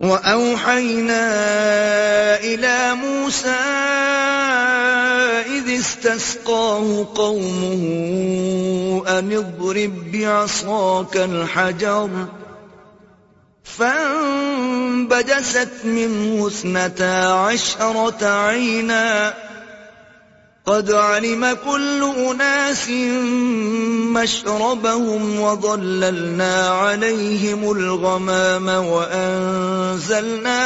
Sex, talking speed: male, 50 wpm